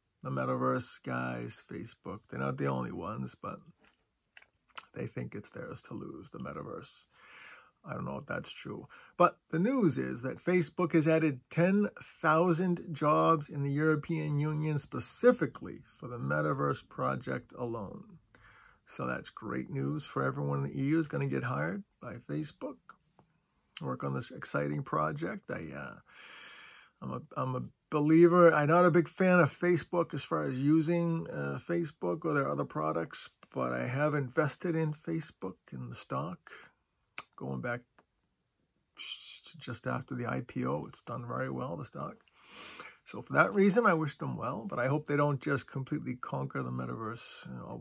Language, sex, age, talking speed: English, male, 40-59, 160 wpm